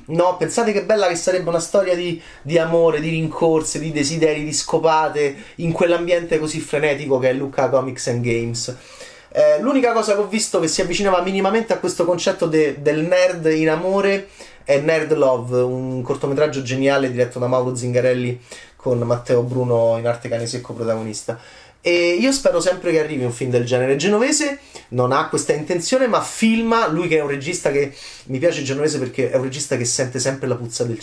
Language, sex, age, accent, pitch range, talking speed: Italian, male, 30-49, native, 125-175 Hz, 190 wpm